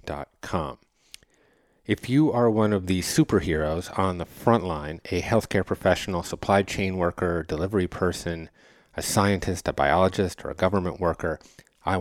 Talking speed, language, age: 145 wpm, English, 30-49